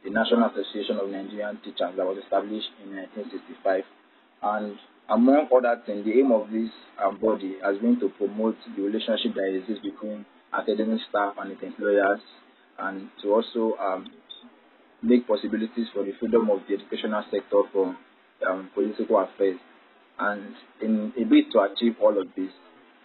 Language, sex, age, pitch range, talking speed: English, male, 20-39, 100-125 Hz, 160 wpm